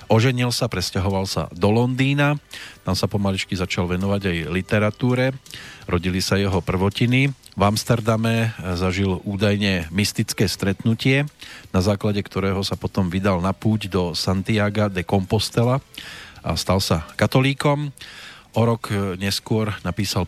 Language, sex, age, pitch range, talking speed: Slovak, male, 40-59, 90-110 Hz, 125 wpm